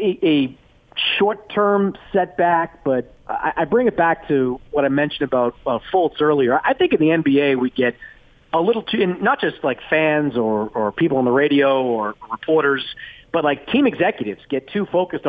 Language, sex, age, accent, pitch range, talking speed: English, male, 40-59, American, 140-190 Hz, 175 wpm